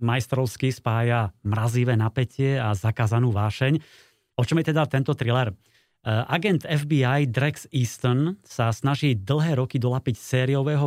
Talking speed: 125 wpm